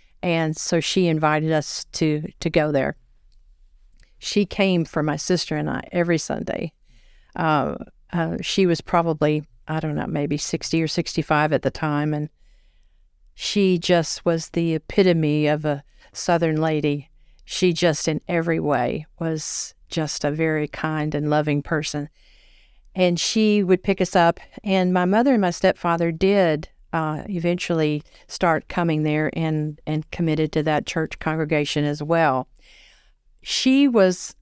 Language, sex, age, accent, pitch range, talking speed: English, female, 50-69, American, 150-175 Hz, 150 wpm